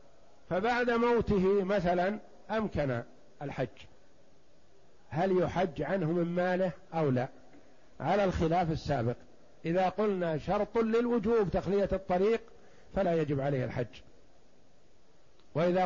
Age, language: 50-69, Arabic